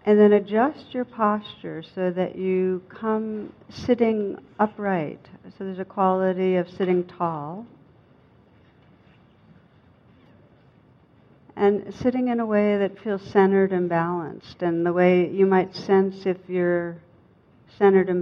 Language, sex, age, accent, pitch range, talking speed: English, female, 60-79, American, 160-190 Hz, 125 wpm